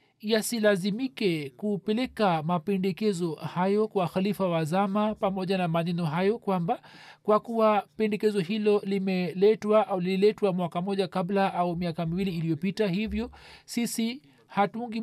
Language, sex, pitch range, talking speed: Swahili, male, 180-220 Hz, 115 wpm